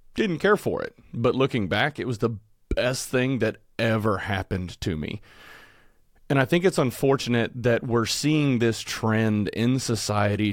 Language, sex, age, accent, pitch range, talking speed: English, male, 30-49, American, 100-120 Hz, 165 wpm